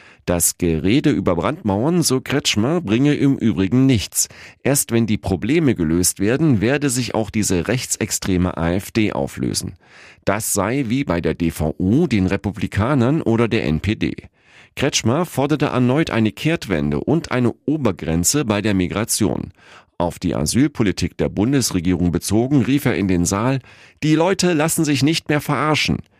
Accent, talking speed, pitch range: German, 145 wpm, 90-135 Hz